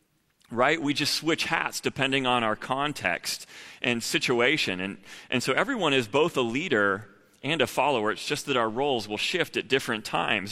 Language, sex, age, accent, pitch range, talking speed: English, male, 30-49, American, 125-155 Hz, 185 wpm